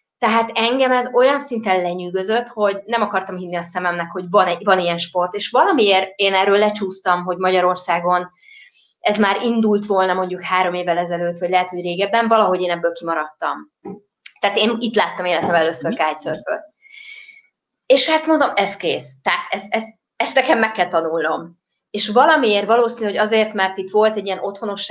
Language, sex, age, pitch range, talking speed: Hungarian, female, 20-39, 180-230 Hz, 170 wpm